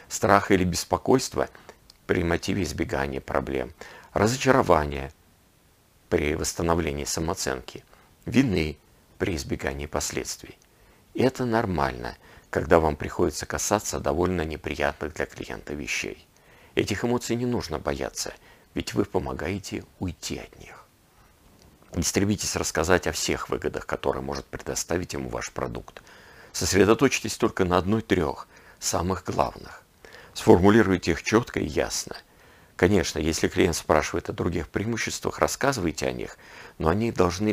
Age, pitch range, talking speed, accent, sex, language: 50-69, 80-105 Hz, 120 wpm, native, male, Russian